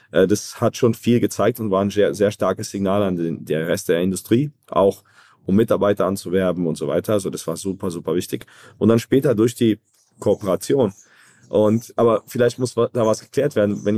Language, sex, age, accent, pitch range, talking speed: German, male, 40-59, German, 100-120 Hz, 200 wpm